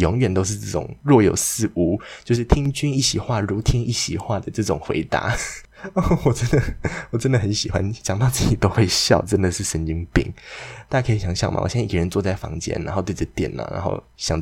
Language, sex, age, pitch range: Chinese, male, 20-39, 90-120 Hz